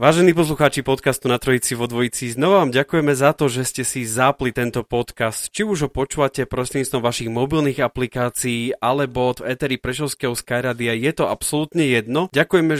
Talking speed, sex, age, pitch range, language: 170 wpm, male, 30-49, 115-135 Hz, Slovak